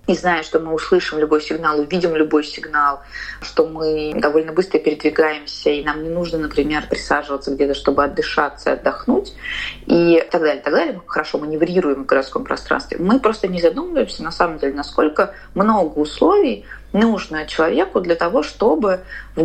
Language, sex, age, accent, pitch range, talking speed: Russian, female, 20-39, native, 155-190 Hz, 160 wpm